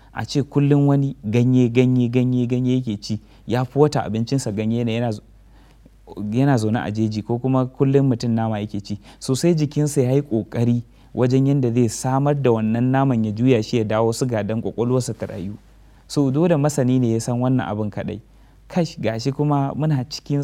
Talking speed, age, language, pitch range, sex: 180 wpm, 30-49, English, 110-130 Hz, male